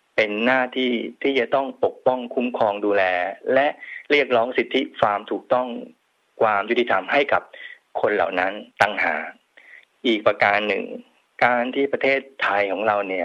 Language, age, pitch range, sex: Thai, 20-39, 110-140 Hz, male